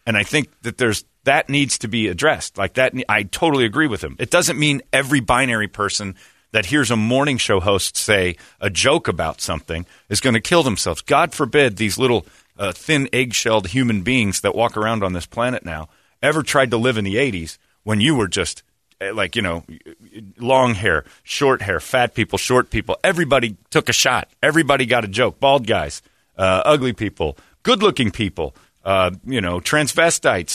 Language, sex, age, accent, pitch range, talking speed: English, male, 40-59, American, 105-135 Hz, 190 wpm